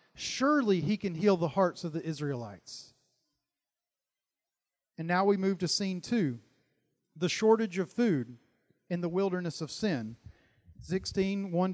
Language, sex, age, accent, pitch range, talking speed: English, male, 40-59, American, 150-215 Hz, 140 wpm